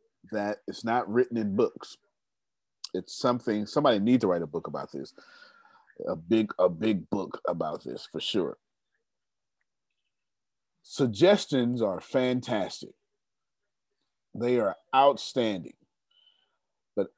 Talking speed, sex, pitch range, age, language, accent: 110 wpm, male, 110-155 Hz, 40-59, English, American